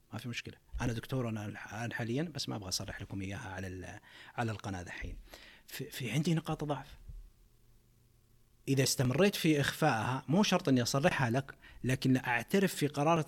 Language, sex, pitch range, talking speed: Arabic, male, 115-140 Hz, 160 wpm